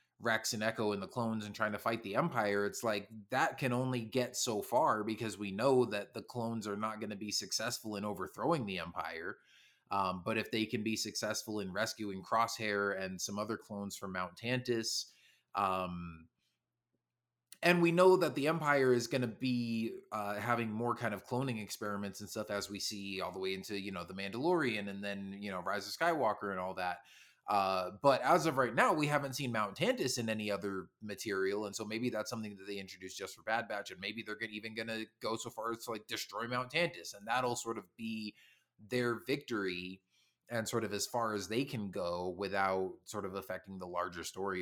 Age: 20-39